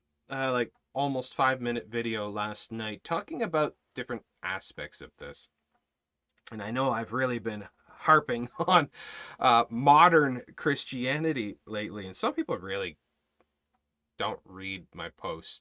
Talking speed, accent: 130 wpm, American